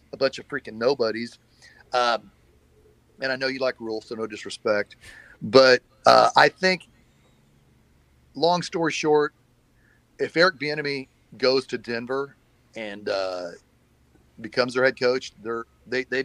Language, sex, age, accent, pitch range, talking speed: English, male, 40-59, American, 115-145 Hz, 135 wpm